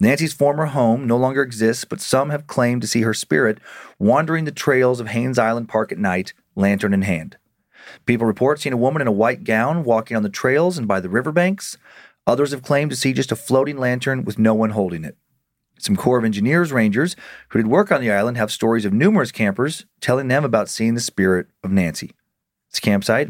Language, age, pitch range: English, 40-59, 110-145 Hz